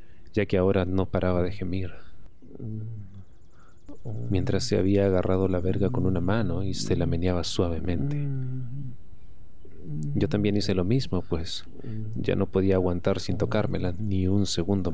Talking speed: 145 wpm